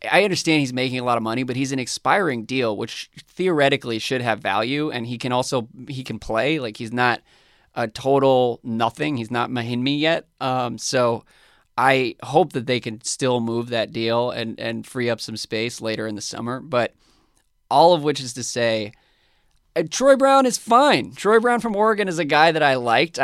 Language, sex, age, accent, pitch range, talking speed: English, male, 20-39, American, 120-140 Hz, 200 wpm